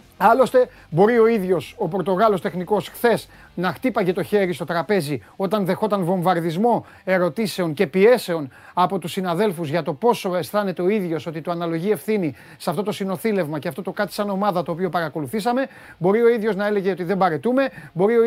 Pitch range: 175-215 Hz